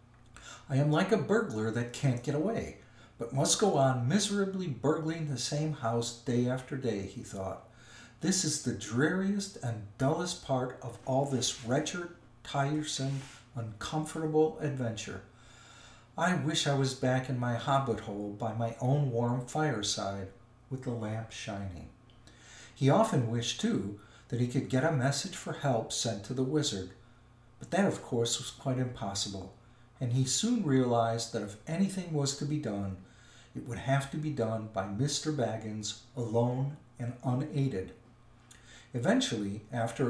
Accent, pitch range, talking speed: American, 115-145 Hz, 155 wpm